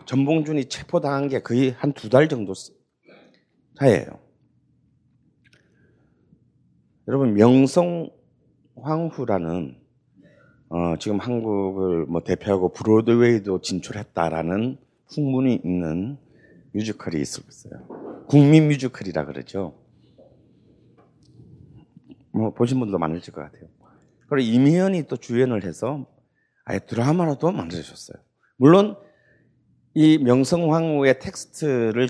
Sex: male